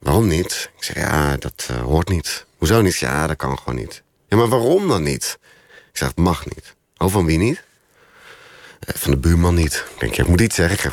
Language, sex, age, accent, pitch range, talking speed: Dutch, male, 40-59, Dutch, 80-105 Hz, 240 wpm